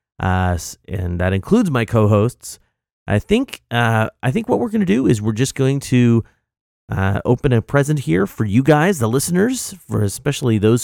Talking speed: 190 wpm